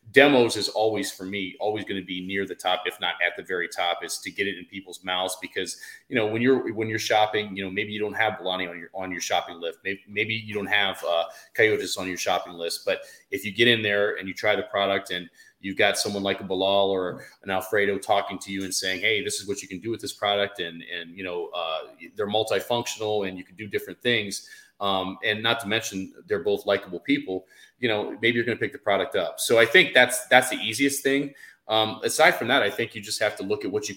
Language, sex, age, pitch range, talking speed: English, male, 30-49, 95-120 Hz, 260 wpm